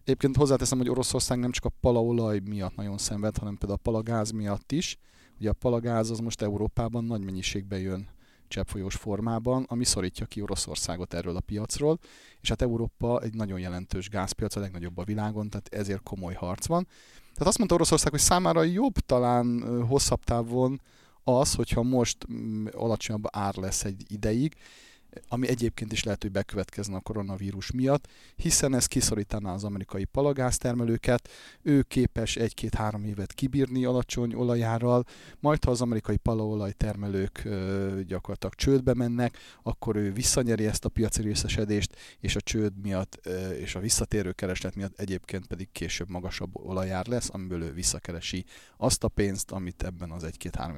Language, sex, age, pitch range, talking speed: Hungarian, male, 30-49, 95-120 Hz, 150 wpm